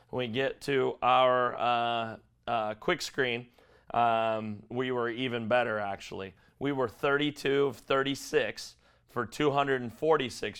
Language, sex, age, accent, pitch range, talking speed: English, male, 30-49, American, 110-125 Hz, 125 wpm